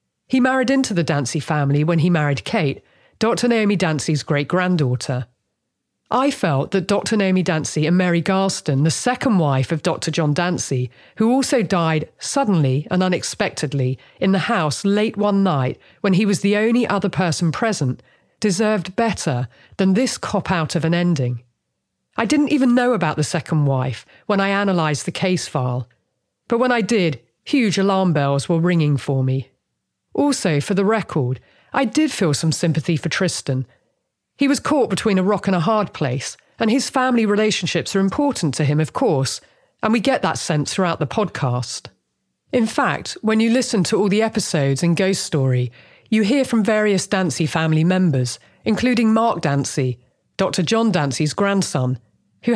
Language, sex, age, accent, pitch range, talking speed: English, female, 40-59, British, 145-215 Hz, 170 wpm